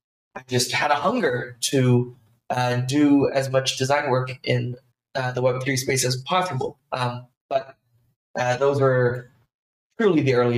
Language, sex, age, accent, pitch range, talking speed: English, male, 20-39, American, 125-150 Hz, 155 wpm